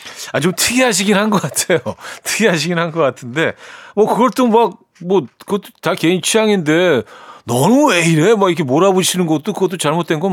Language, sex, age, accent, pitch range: Korean, male, 40-59, native, 115-175 Hz